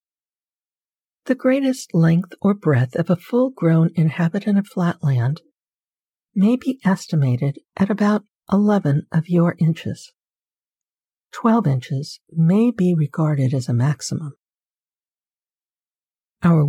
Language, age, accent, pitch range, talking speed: English, 60-79, American, 145-200 Hz, 105 wpm